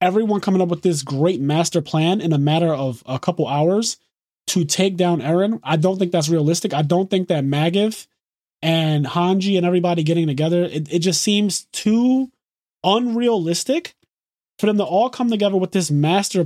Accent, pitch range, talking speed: American, 155-205 Hz, 180 wpm